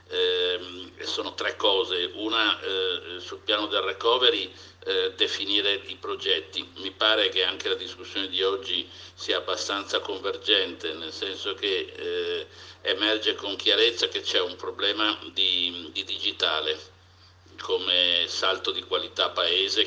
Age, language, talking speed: 50-69, Italian, 135 wpm